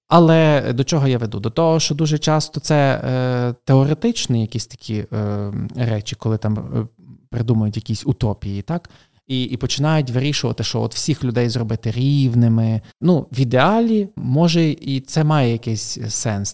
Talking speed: 150 wpm